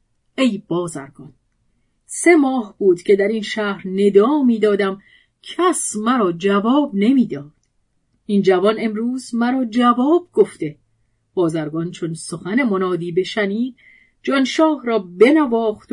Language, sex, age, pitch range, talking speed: Persian, female, 40-59, 175-235 Hz, 115 wpm